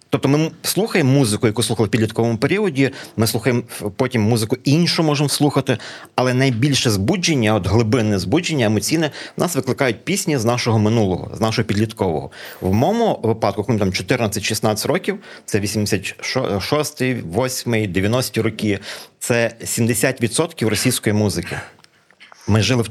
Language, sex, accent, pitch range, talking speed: Ukrainian, male, native, 105-135 Hz, 135 wpm